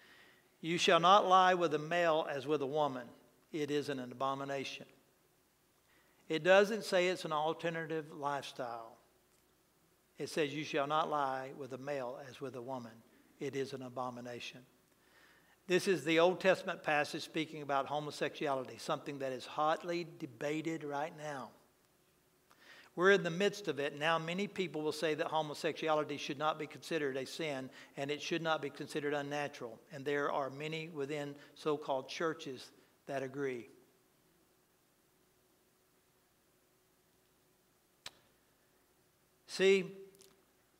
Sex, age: male, 60-79